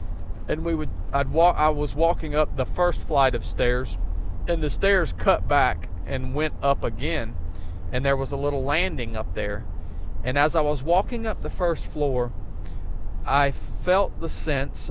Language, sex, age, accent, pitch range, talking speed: English, male, 40-59, American, 90-145 Hz, 175 wpm